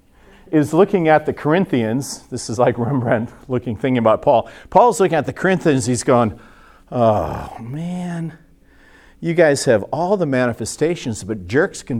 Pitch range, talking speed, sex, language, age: 110-150 Hz, 155 wpm, male, English, 50-69